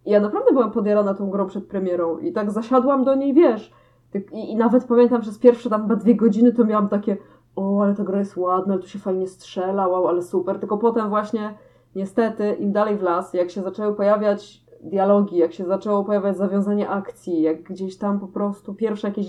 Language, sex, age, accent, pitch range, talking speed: Polish, female, 20-39, native, 185-225 Hz, 215 wpm